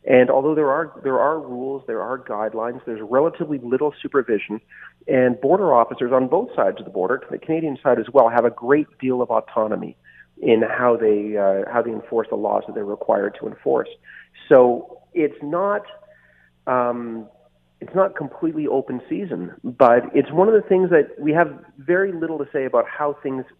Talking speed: 190 wpm